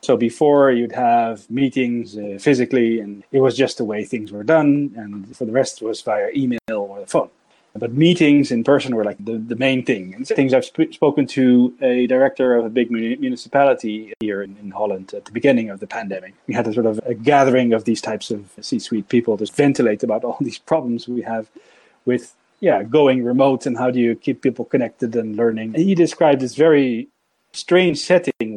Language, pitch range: English, 120-150 Hz